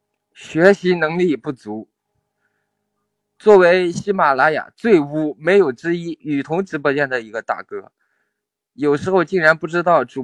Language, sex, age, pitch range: Chinese, male, 20-39, 145-195 Hz